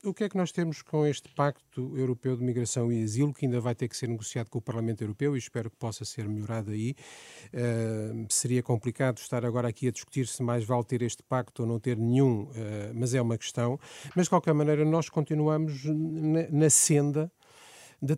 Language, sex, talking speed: Portuguese, male, 210 wpm